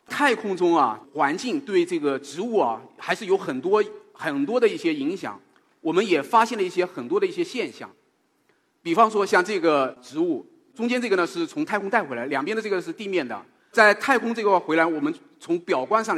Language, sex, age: Chinese, male, 30-49